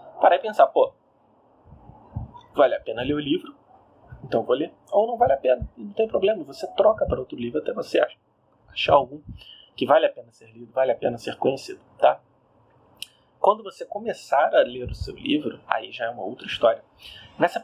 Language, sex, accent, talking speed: Portuguese, male, Brazilian, 195 wpm